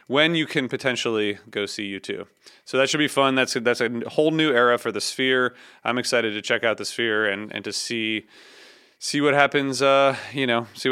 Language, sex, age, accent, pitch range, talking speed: English, male, 30-49, American, 115-135 Hz, 225 wpm